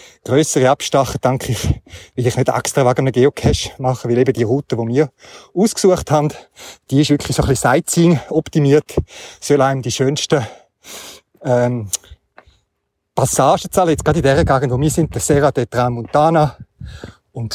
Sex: male